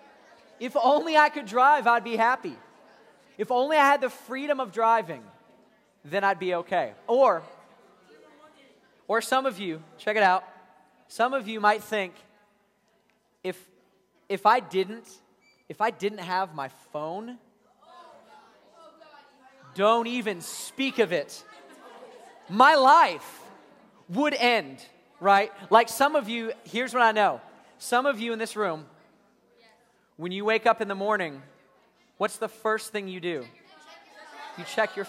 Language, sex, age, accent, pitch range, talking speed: English, male, 20-39, American, 180-245 Hz, 140 wpm